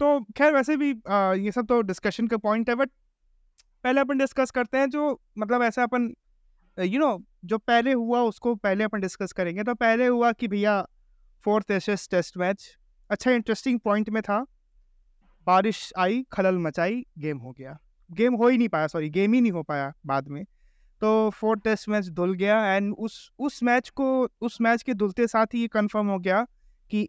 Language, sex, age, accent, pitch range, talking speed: Hindi, male, 20-39, native, 185-240 Hz, 200 wpm